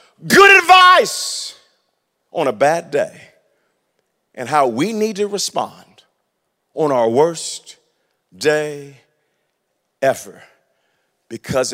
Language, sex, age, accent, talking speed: English, male, 50-69, American, 90 wpm